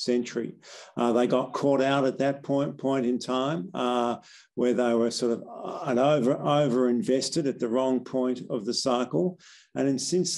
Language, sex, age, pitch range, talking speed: English, male, 50-69, 120-135 Hz, 160 wpm